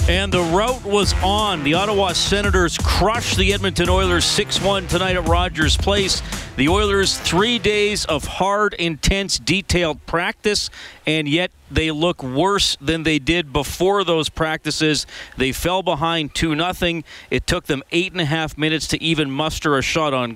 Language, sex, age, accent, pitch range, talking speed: English, male, 40-59, American, 135-170 Hz, 160 wpm